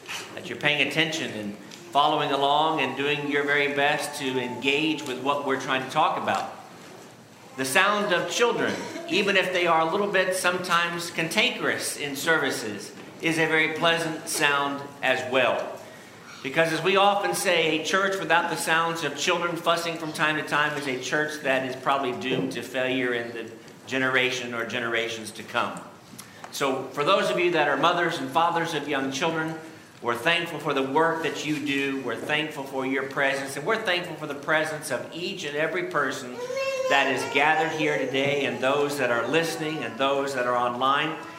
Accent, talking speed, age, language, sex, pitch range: American, 185 wpm, 50-69, English, male, 140-170 Hz